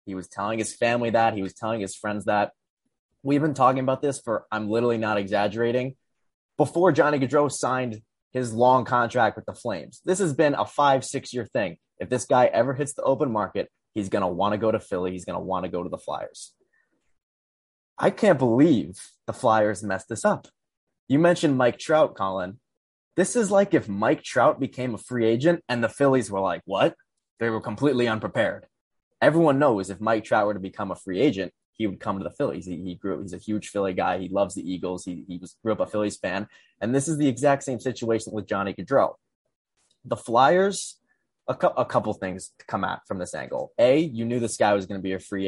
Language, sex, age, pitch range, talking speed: English, male, 20-39, 100-135 Hz, 225 wpm